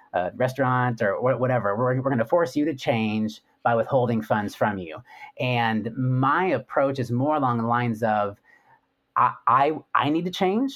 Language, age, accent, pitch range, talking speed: English, 30-49, American, 110-135 Hz, 180 wpm